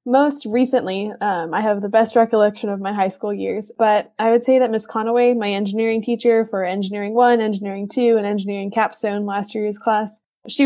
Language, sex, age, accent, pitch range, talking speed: English, female, 10-29, American, 195-230 Hz, 195 wpm